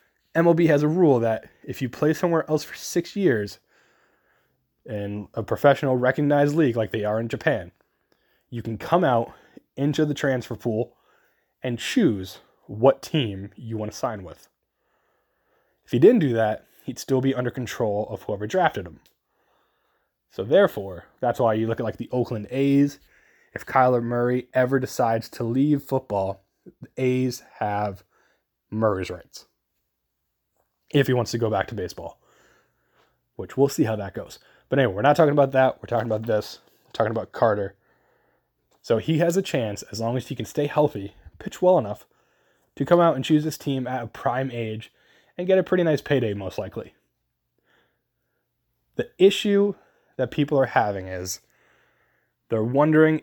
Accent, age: American, 20-39